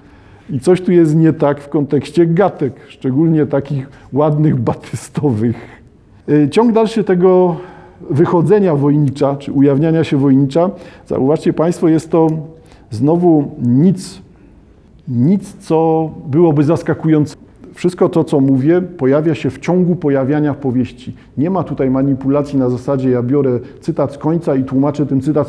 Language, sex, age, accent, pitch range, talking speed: Polish, male, 50-69, native, 130-170 Hz, 135 wpm